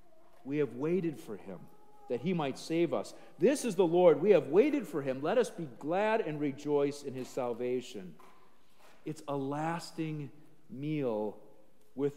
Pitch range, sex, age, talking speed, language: 140-205 Hz, male, 50-69, 165 wpm, English